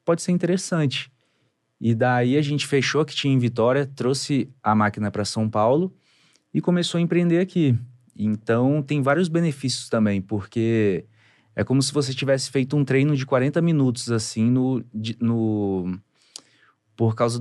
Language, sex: Portuguese, male